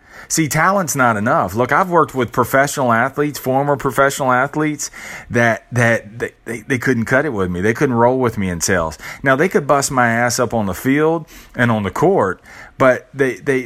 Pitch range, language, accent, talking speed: 95-130 Hz, English, American, 205 wpm